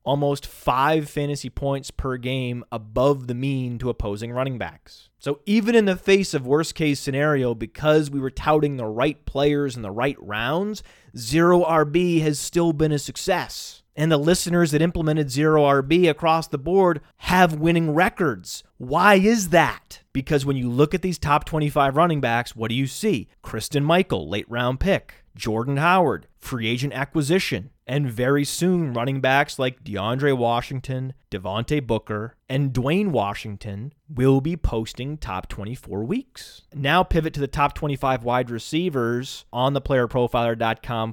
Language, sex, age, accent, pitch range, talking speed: English, male, 30-49, American, 120-155 Hz, 160 wpm